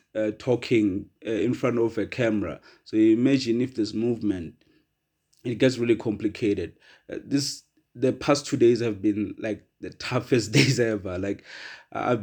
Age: 30-49